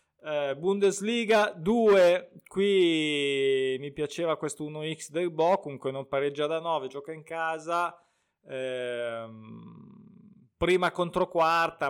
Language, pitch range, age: Italian, 140-170 Hz, 20-39